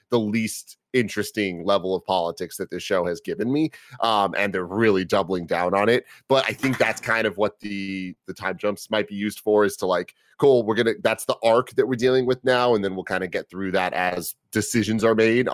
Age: 30-49